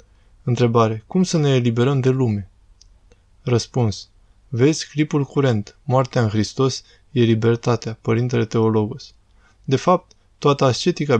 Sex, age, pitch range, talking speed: male, 20-39, 105-130 Hz, 120 wpm